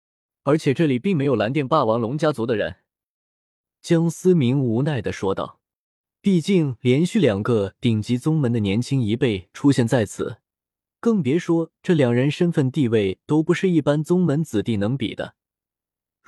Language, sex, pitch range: Chinese, male, 110-160 Hz